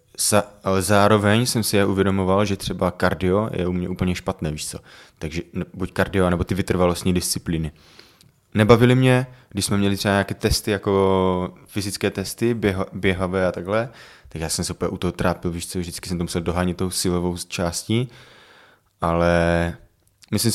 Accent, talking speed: native, 170 wpm